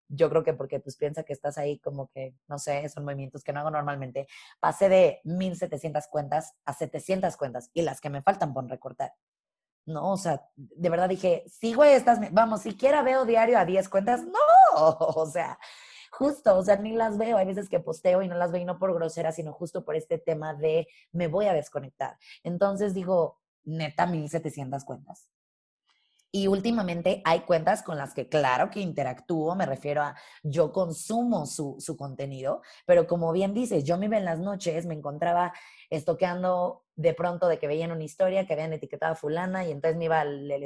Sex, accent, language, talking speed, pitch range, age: female, Mexican, Spanish, 195 wpm, 150-190 Hz, 20-39